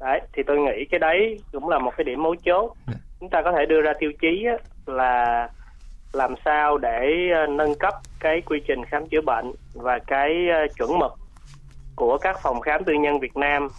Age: 20-39